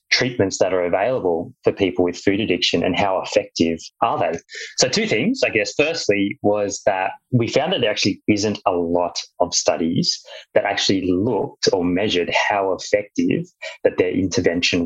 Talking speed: 170 wpm